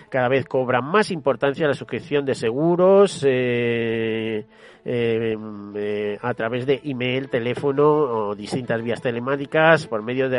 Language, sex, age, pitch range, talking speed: Spanish, male, 40-59, 120-150 Hz, 140 wpm